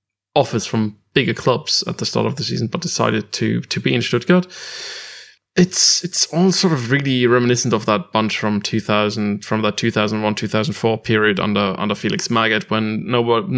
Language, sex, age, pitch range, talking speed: English, male, 20-39, 110-140 Hz, 170 wpm